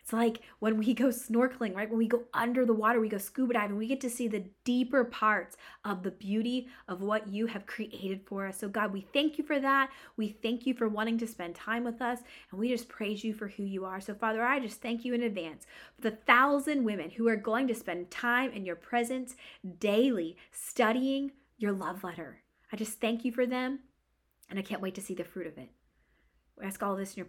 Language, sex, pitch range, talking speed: English, female, 190-255 Hz, 235 wpm